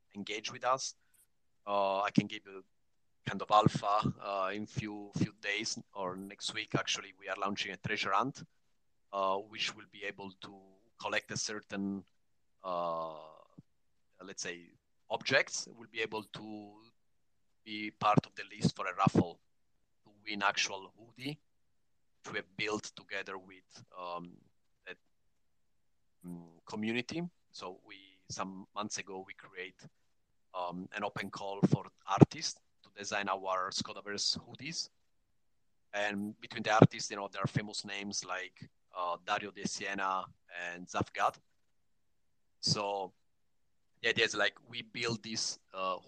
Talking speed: 140 wpm